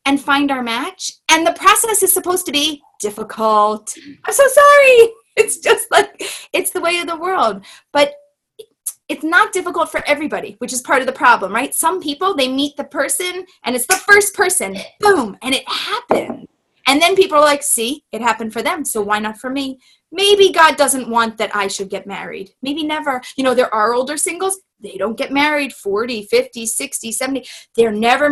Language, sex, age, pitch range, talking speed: English, female, 30-49, 210-310 Hz, 200 wpm